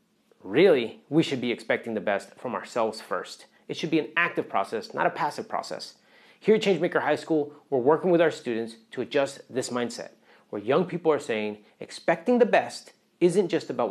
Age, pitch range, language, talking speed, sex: 30-49, 125-170 Hz, English, 195 wpm, male